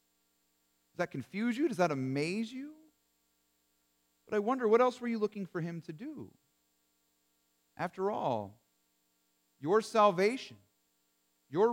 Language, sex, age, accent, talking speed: English, male, 40-59, American, 130 wpm